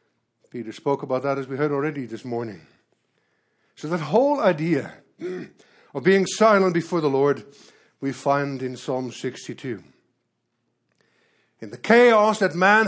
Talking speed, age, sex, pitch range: 140 wpm, 60-79, male, 140-200 Hz